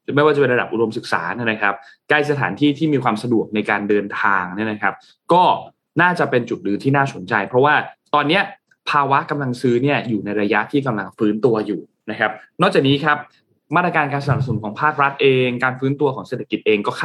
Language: Thai